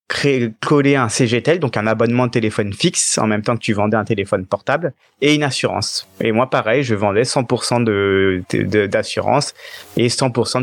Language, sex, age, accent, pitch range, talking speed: French, male, 30-49, French, 105-130 Hz, 185 wpm